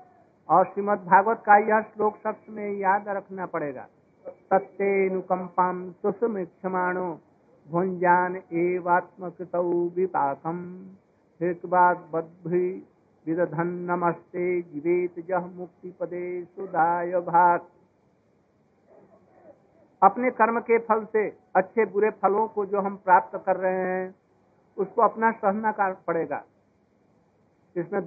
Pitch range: 180-215 Hz